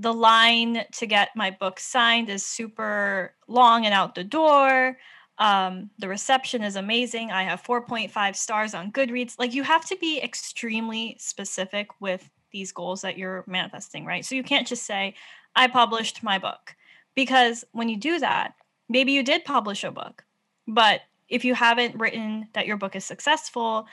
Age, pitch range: 10-29, 200-245 Hz